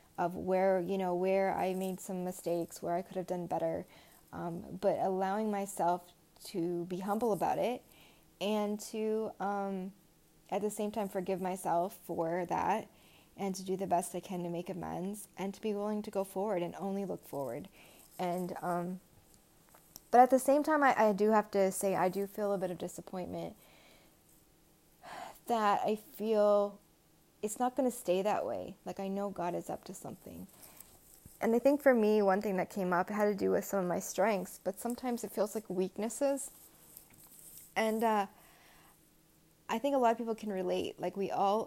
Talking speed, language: 190 wpm, English